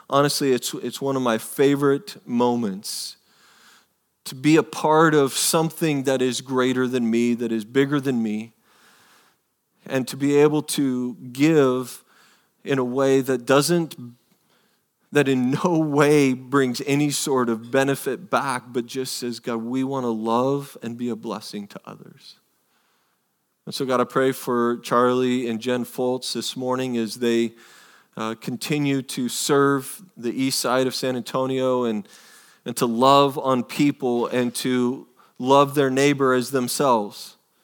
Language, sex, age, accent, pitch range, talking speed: English, male, 40-59, American, 120-140 Hz, 155 wpm